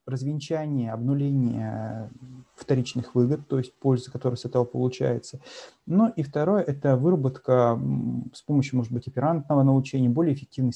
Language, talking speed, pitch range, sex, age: Russian, 135 wpm, 115-135 Hz, male, 30-49